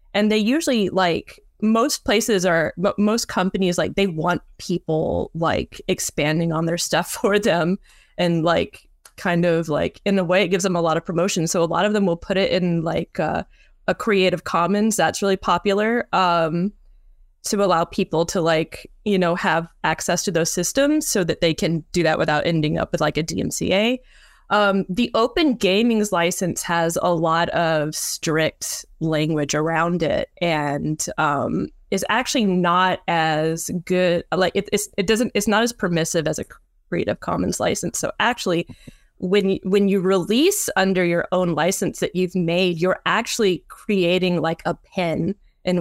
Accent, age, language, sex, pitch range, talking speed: American, 20-39, English, female, 165-200 Hz, 175 wpm